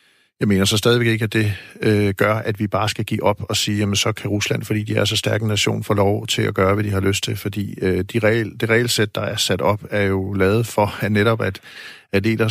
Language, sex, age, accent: Danish, male, 50-69, native